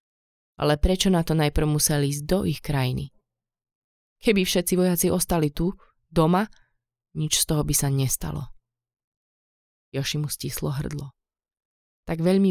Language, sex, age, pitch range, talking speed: Slovak, female, 20-39, 125-155 Hz, 130 wpm